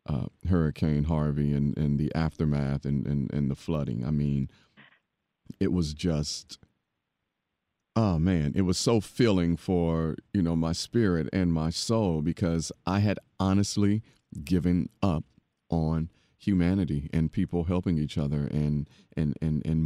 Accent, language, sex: American, English, male